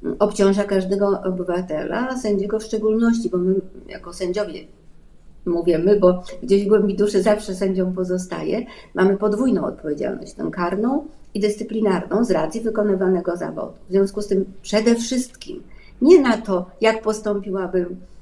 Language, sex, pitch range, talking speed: Polish, female, 185-215 Hz, 135 wpm